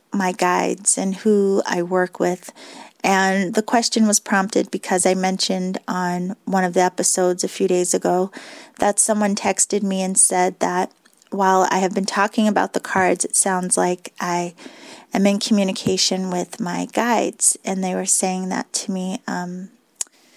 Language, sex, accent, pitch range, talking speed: English, female, American, 185-220 Hz, 170 wpm